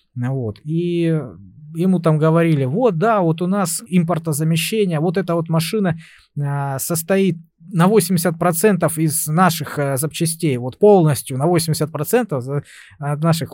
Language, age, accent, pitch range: Russian, 20-39, native, 135-180 Hz